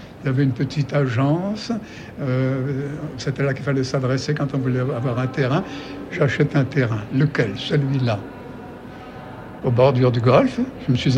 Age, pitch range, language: 60-79, 130-185 Hz, French